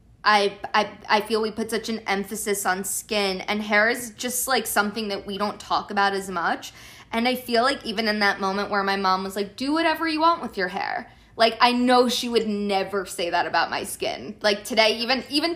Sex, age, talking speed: female, 20-39, 230 wpm